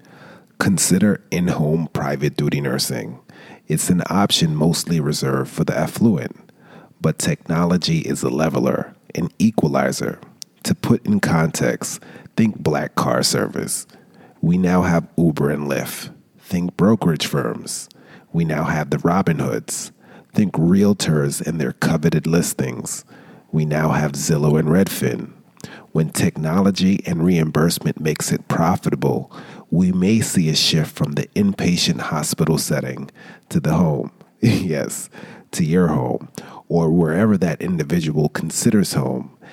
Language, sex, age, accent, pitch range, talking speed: English, male, 40-59, American, 75-90 Hz, 130 wpm